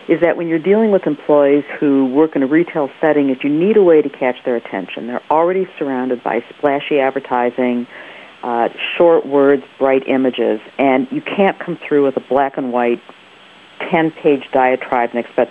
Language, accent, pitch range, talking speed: English, American, 130-165 Hz, 180 wpm